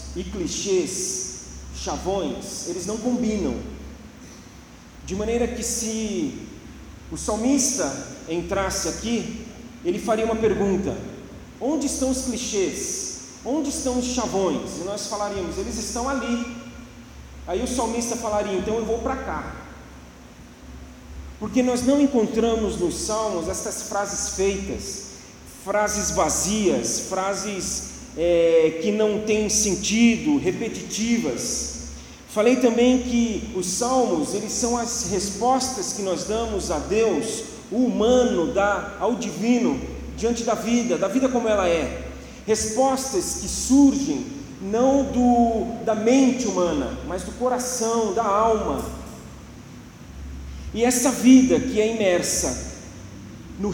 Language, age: Portuguese, 40-59